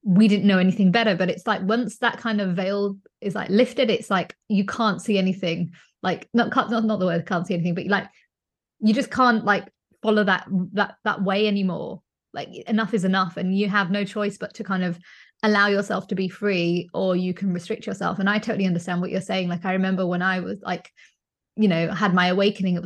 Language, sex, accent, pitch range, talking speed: English, female, British, 185-220 Hz, 225 wpm